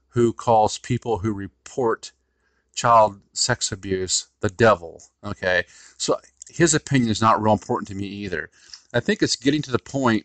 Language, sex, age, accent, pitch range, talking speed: English, male, 40-59, American, 100-115 Hz, 165 wpm